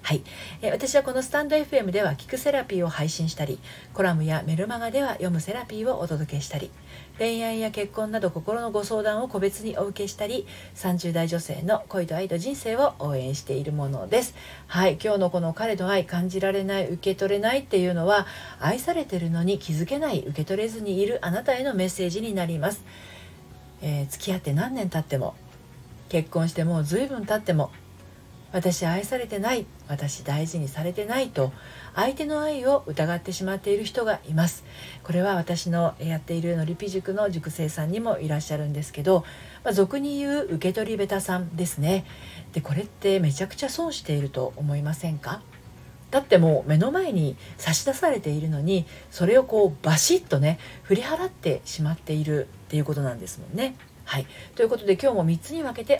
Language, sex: Japanese, female